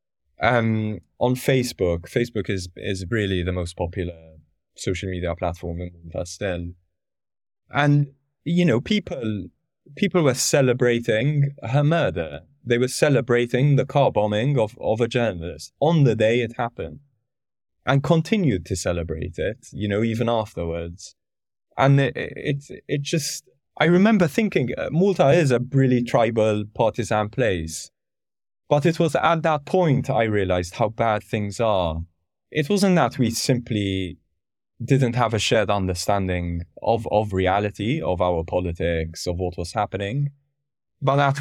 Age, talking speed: 20-39, 140 wpm